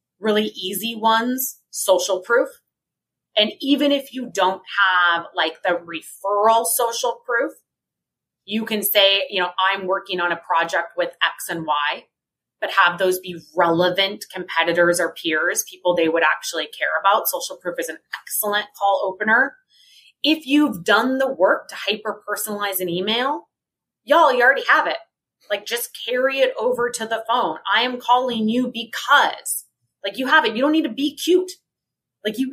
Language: English